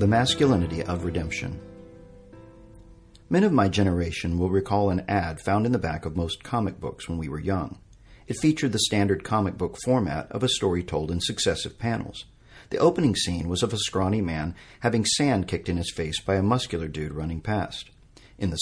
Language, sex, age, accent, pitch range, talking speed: English, male, 50-69, American, 90-120 Hz, 195 wpm